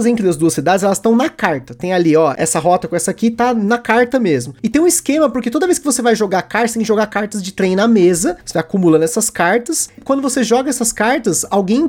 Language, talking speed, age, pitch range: Portuguese, 255 wpm, 20-39, 180-245 Hz